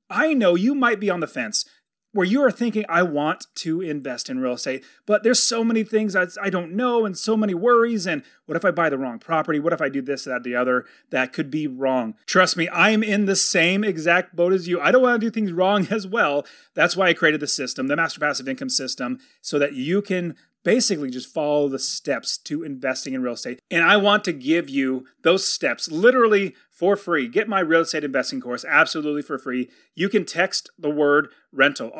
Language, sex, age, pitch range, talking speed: English, male, 30-49, 145-200 Hz, 225 wpm